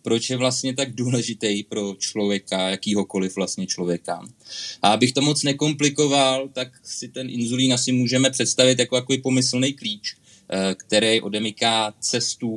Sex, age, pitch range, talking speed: male, 20-39, 105-130 Hz, 135 wpm